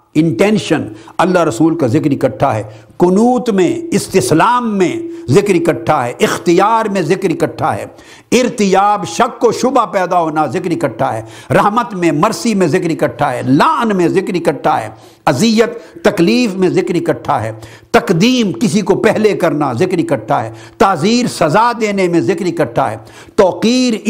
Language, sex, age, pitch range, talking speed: Urdu, male, 60-79, 150-220 Hz, 155 wpm